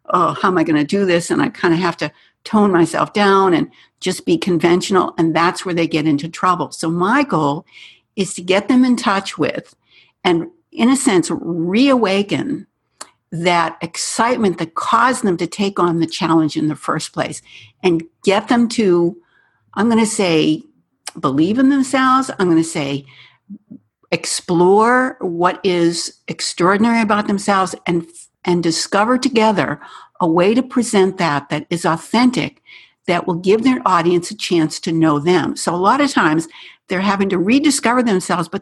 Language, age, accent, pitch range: English, 60-79, American, 170-220 Hz